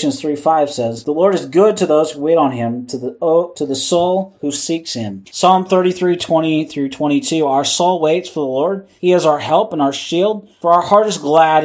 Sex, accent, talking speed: male, American, 220 wpm